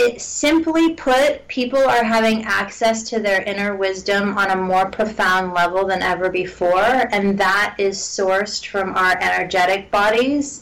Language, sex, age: English, female, 30-49